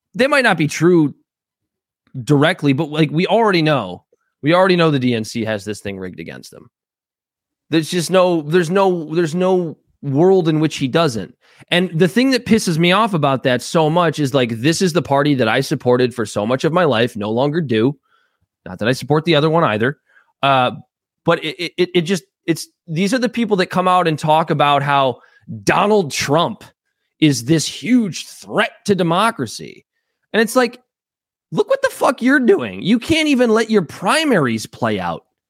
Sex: male